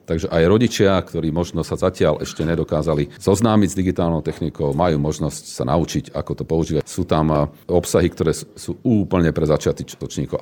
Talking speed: 165 wpm